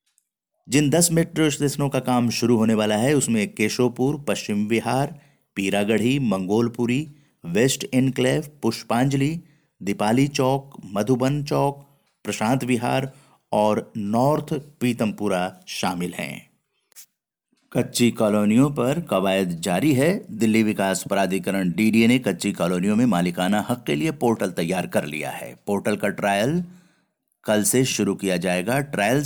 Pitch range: 105-145 Hz